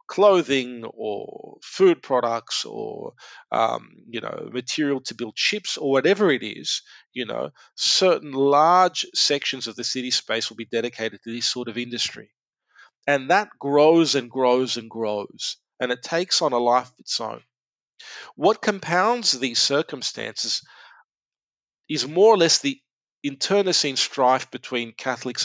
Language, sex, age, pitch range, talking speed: English, male, 40-59, 120-155 Hz, 145 wpm